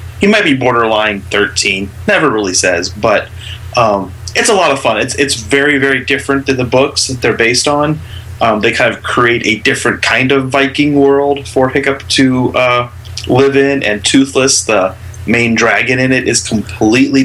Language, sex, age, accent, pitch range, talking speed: English, male, 30-49, American, 105-135 Hz, 185 wpm